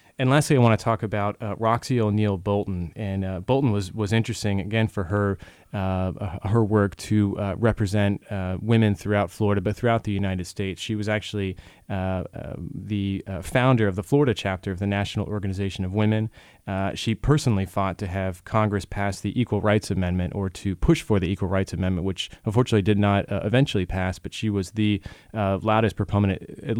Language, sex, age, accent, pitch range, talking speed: English, male, 30-49, American, 95-110 Hz, 195 wpm